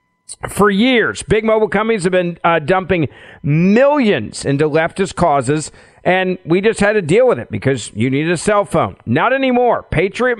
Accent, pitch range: American, 150-210 Hz